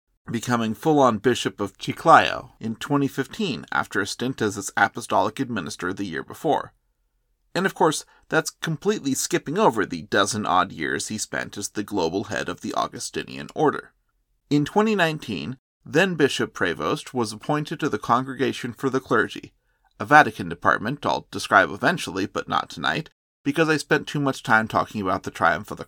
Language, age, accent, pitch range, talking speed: English, 30-49, American, 120-150 Hz, 170 wpm